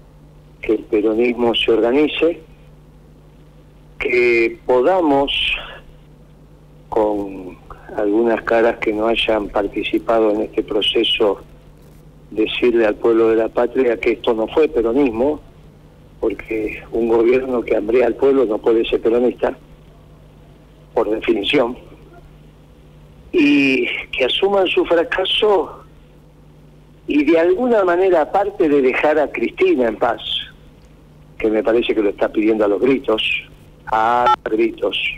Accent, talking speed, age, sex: Argentinian, 120 wpm, 50-69, male